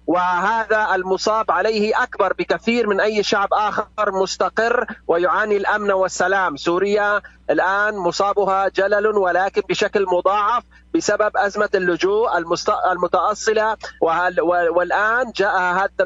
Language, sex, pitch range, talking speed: Arabic, male, 185-220 Hz, 100 wpm